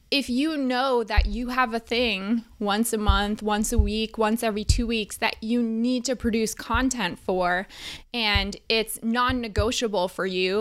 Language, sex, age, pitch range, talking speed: English, female, 20-39, 210-250 Hz, 170 wpm